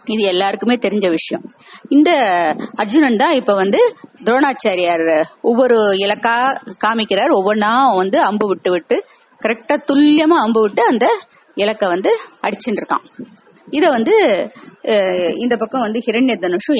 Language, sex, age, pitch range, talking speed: Tamil, female, 30-49, 195-265 Hz, 120 wpm